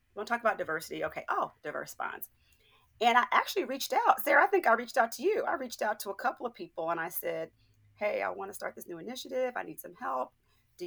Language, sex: English, female